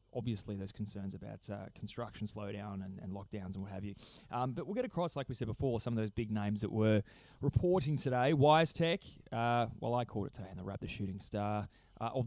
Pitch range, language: 105-125 Hz, English